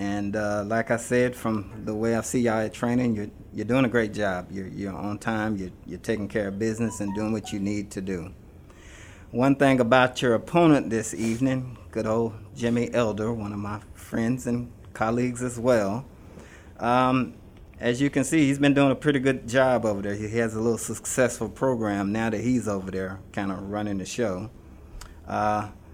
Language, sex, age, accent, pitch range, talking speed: English, male, 30-49, American, 100-120 Hz, 200 wpm